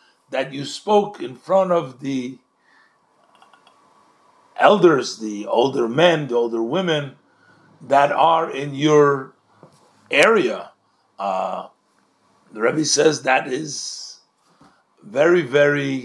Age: 50-69